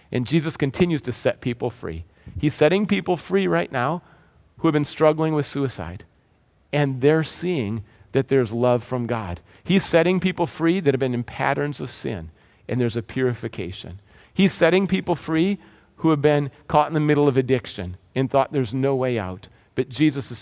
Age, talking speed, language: 40-59, 190 wpm, English